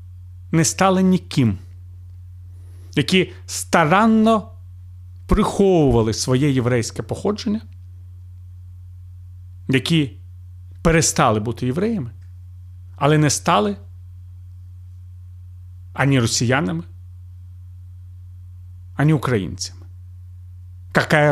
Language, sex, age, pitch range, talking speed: Ukrainian, male, 40-59, 90-145 Hz, 60 wpm